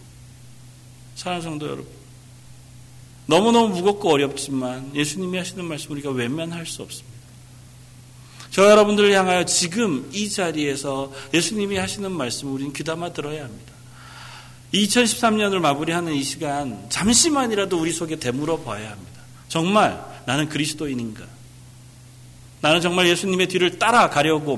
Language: Korean